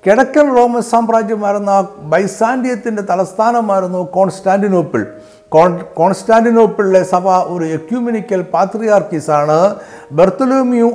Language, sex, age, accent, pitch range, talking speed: Malayalam, male, 60-79, native, 180-210 Hz, 75 wpm